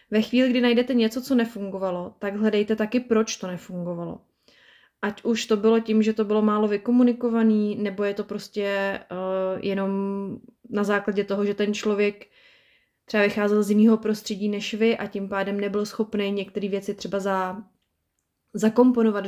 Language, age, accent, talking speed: Czech, 20-39, native, 160 wpm